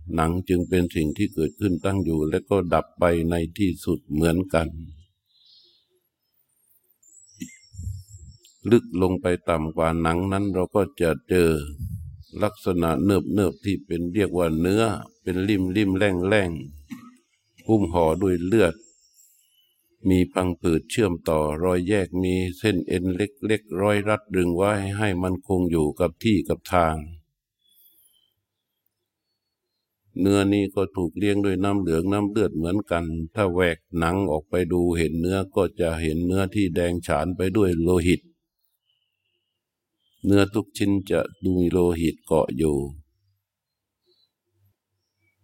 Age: 60-79